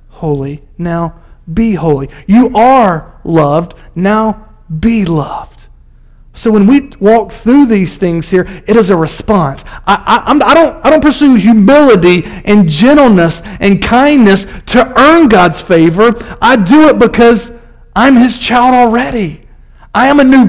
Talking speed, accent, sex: 145 wpm, American, male